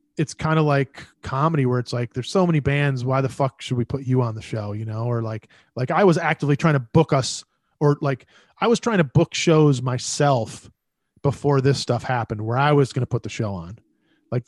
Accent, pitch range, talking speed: American, 125-145 Hz, 235 wpm